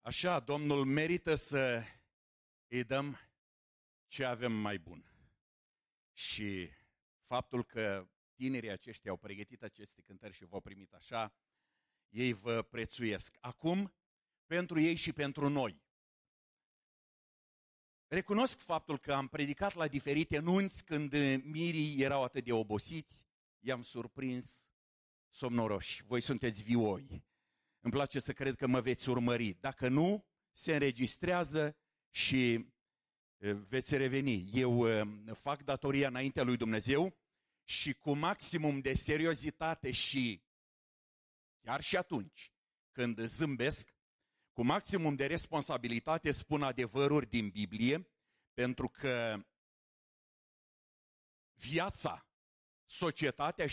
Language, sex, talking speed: English, male, 105 wpm